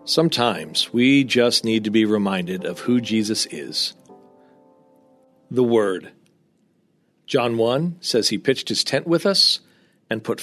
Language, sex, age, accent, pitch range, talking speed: English, male, 40-59, American, 110-130 Hz, 140 wpm